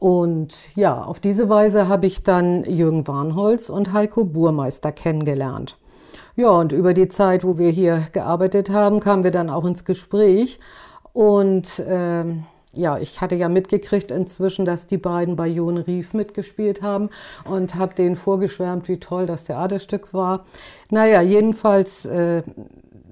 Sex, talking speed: female, 150 wpm